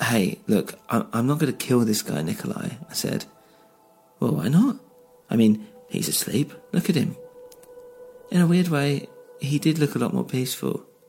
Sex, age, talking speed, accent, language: male, 40-59, 180 wpm, British, English